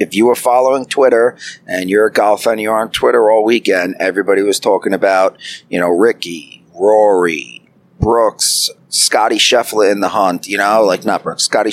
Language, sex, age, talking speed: English, male, 40-59, 180 wpm